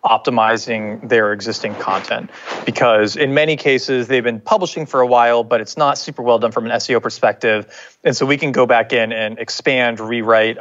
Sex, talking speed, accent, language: male, 190 wpm, American, English